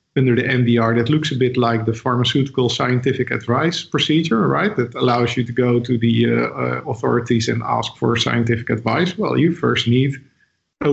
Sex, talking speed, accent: male, 185 wpm, Dutch